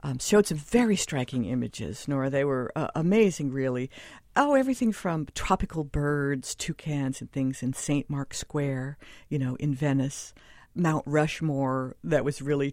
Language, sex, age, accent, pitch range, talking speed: English, female, 50-69, American, 135-195 Hz, 155 wpm